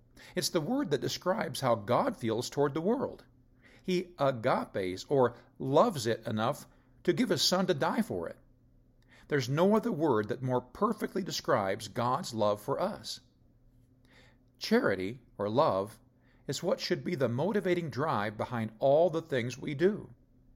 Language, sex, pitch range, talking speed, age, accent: English, male, 120-165 Hz, 155 wpm, 50-69, American